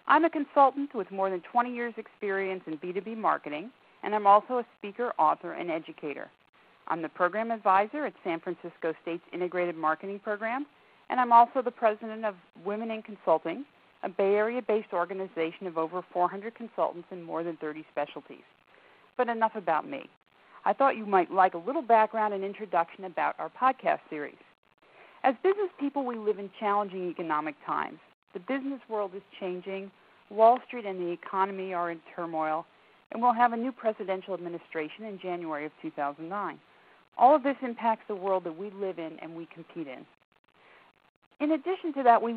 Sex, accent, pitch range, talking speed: female, American, 180-230 Hz, 175 wpm